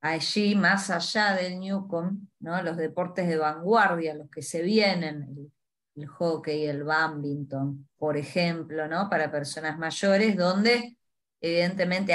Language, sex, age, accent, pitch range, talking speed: Spanish, female, 20-39, Argentinian, 150-180 Hz, 125 wpm